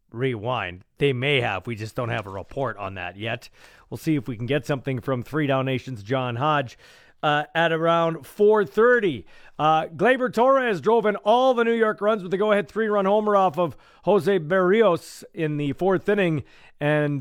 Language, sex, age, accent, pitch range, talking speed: English, male, 40-59, American, 145-200 Hz, 190 wpm